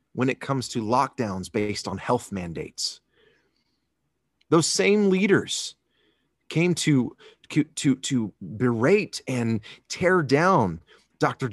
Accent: American